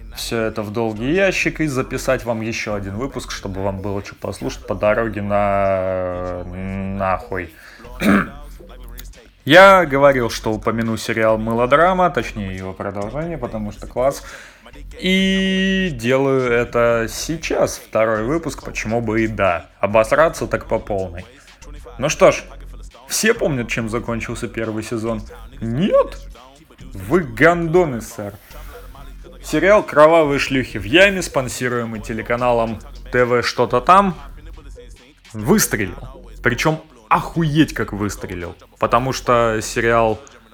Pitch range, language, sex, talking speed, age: 110-140 Hz, Russian, male, 115 wpm, 20-39